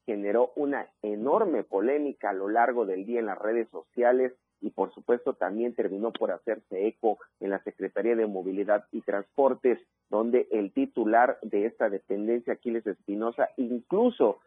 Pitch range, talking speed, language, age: 105-135 Hz, 155 wpm, Spanish, 40-59